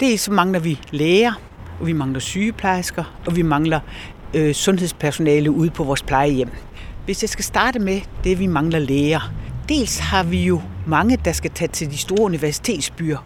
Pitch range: 150-235 Hz